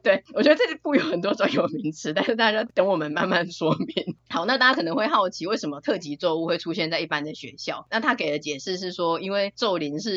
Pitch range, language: 150-180 Hz, Chinese